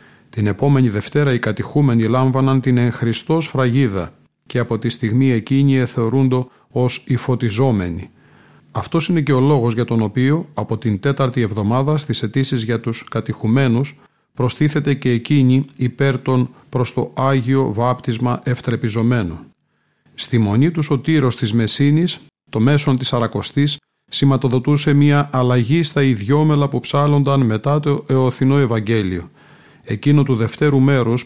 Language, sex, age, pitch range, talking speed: Greek, male, 40-59, 115-140 Hz, 140 wpm